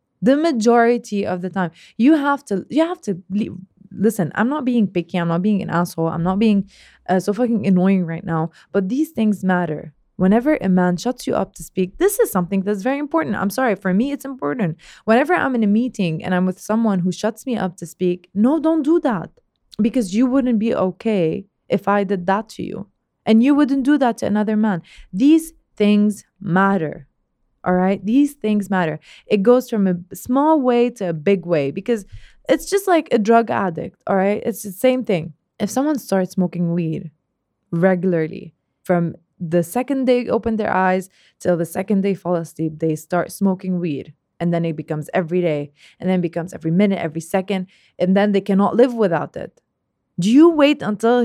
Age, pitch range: 20-39, 180-235 Hz